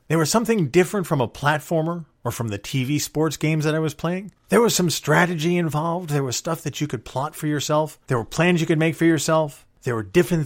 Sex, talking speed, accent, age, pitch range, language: male, 240 wpm, American, 40-59, 130-175 Hz, English